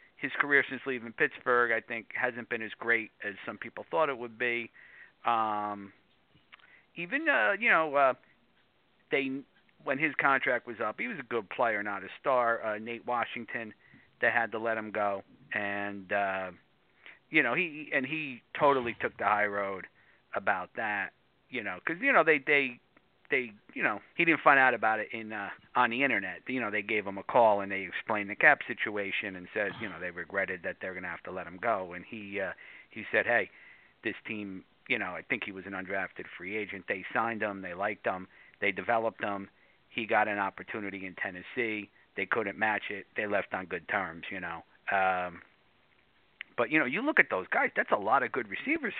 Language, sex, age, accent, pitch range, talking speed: English, male, 50-69, American, 95-115 Hz, 205 wpm